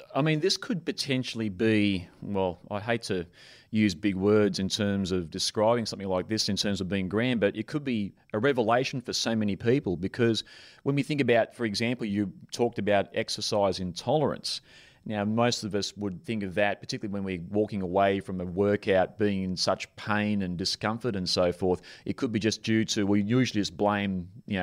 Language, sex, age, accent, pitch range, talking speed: English, male, 30-49, Australian, 95-115 Hz, 200 wpm